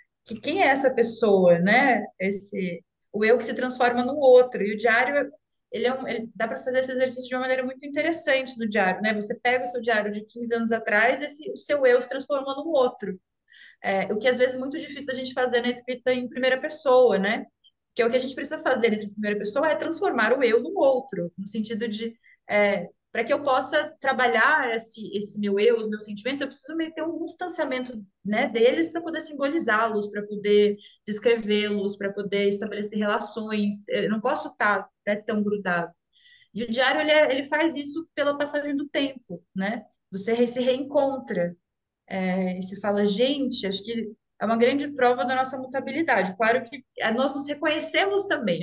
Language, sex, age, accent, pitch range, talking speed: Portuguese, female, 20-39, Brazilian, 210-275 Hz, 200 wpm